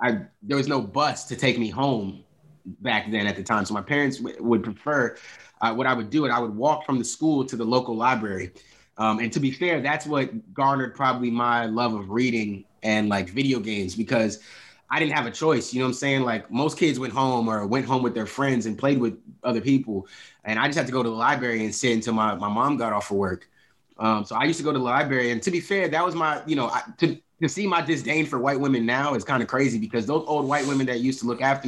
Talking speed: 265 wpm